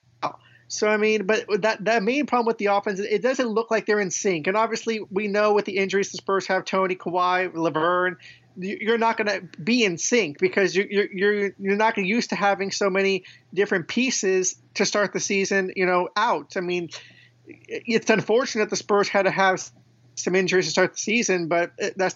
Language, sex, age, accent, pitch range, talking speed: English, male, 30-49, American, 185-220 Hz, 205 wpm